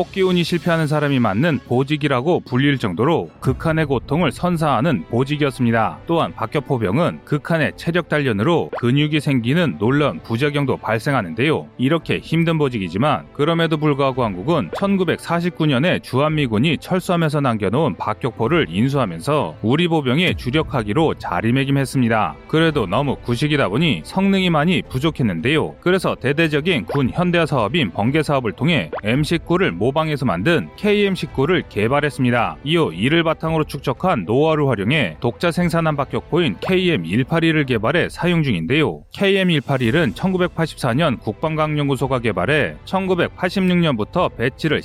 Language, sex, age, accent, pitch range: Korean, male, 30-49, native, 130-170 Hz